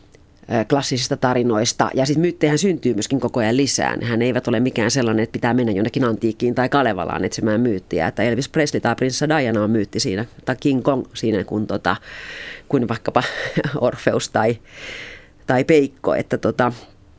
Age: 30-49